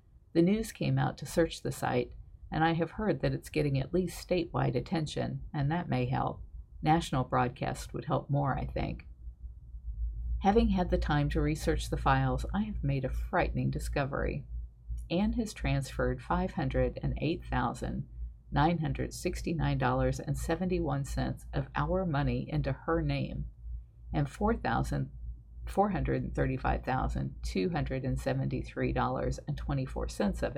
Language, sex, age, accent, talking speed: English, female, 50-69, American, 110 wpm